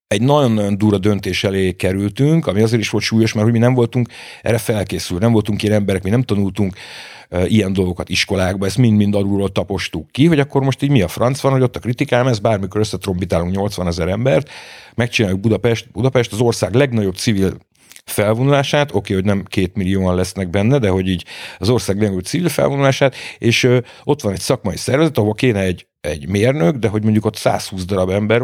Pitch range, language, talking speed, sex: 95-125 Hz, Hungarian, 200 wpm, male